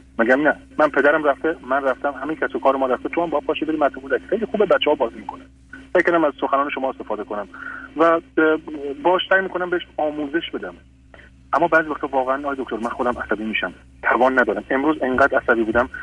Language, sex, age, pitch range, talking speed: Persian, male, 40-59, 125-170 Hz, 200 wpm